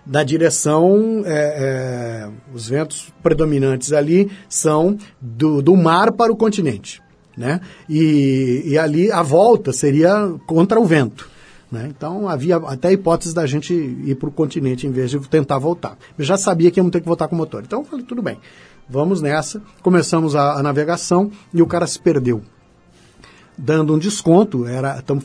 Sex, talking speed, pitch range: male, 170 wpm, 140-195 Hz